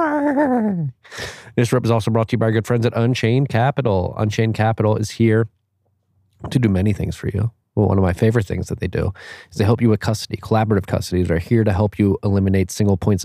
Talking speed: 220 wpm